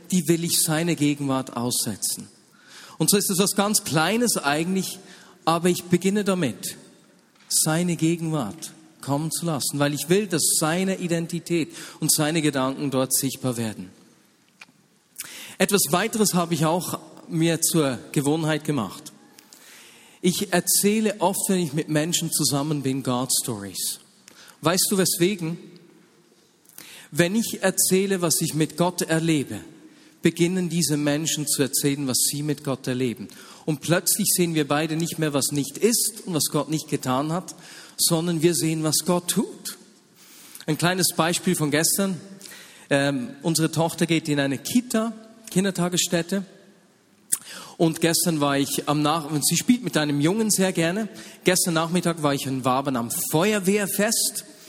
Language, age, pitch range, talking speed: German, 40-59, 150-185 Hz, 145 wpm